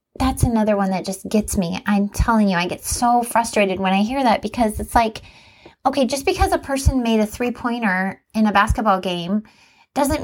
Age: 30-49